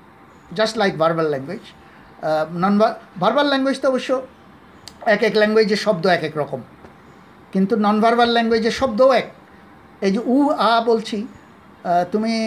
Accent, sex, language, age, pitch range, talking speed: native, male, Bengali, 50-69, 180-225 Hz, 135 wpm